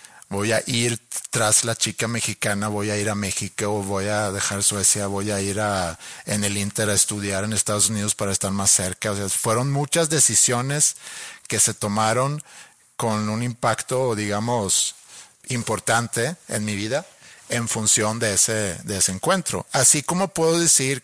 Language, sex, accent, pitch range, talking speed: Spanish, male, Mexican, 105-130 Hz, 170 wpm